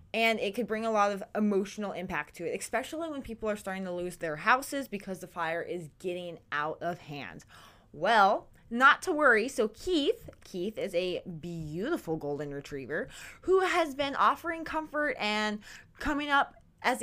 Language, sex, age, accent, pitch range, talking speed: English, female, 20-39, American, 190-255 Hz, 175 wpm